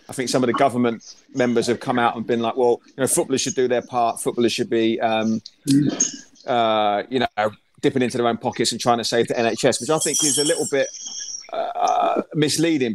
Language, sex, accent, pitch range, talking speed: English, male, British, 115-135 Hz, 220 wpm